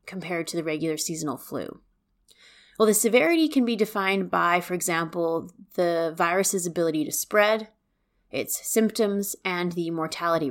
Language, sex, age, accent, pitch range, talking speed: English, female, 30-49, American, 170-215 Hz, 145 wpm